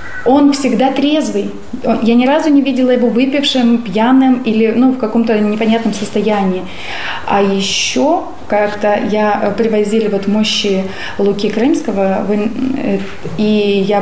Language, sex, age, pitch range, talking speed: Russian, female, 20-39, 205-250 Hz, 115 wpm